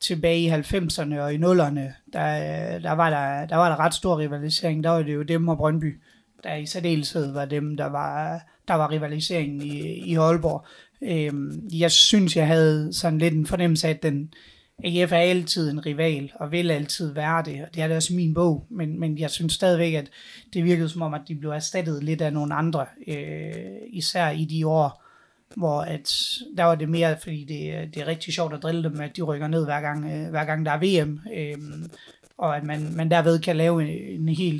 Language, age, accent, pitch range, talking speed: Danish, 30-49, native, 150-170 Hz, 215 wpm